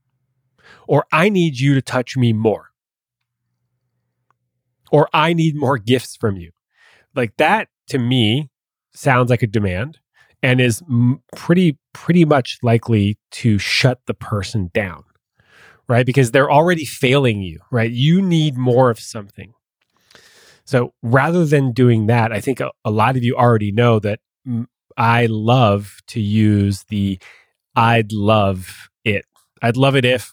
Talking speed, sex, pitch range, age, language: 140 wpm, male, 110-135 Hz, 30-49, English